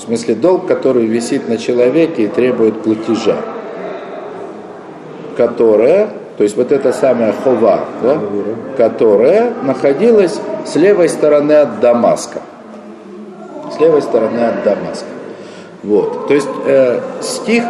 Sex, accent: male, native